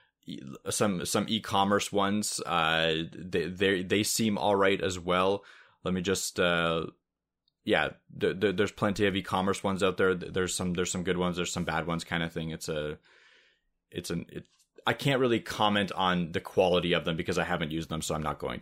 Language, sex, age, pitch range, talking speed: English, male, 20-39, 90-115 Hz, 205 wpm